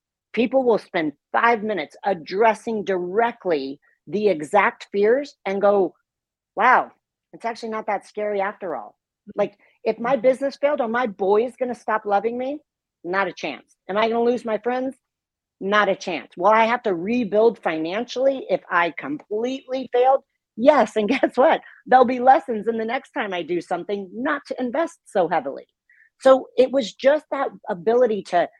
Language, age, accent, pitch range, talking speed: English, 40-59, American, 195-260 Hz, 170 wpm